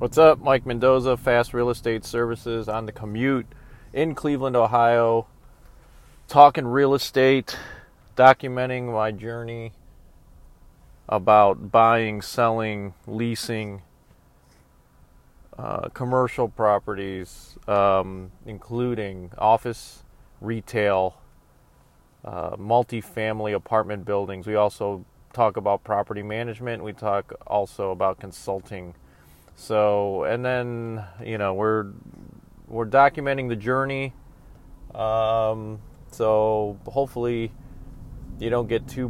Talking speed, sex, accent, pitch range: 95 wpm, male, American, 100-120 Hz